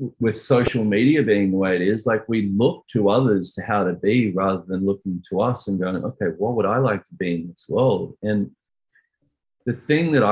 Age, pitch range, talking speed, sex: 30-49, 95-115 Hz, 220 wpm, male